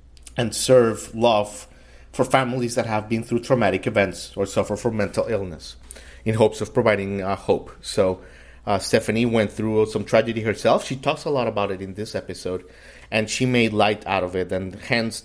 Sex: male